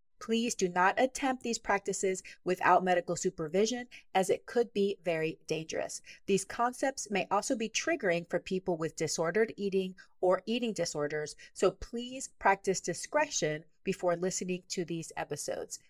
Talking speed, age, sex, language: 145 wpm, 30-49, female, English